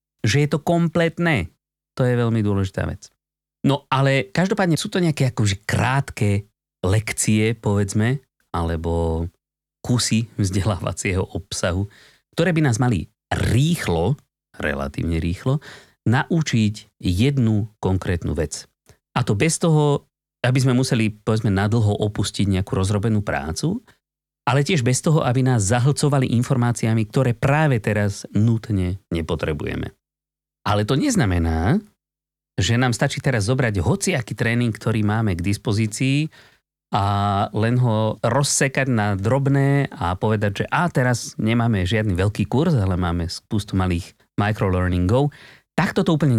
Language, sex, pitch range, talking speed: Slovak, male, 100-135 Hz, 125 wpm